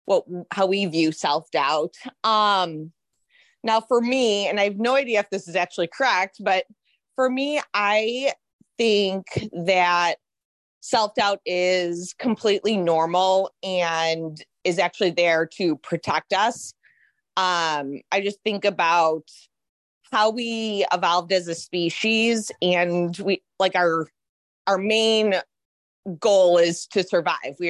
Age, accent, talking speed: 20-39, American, 125 wpm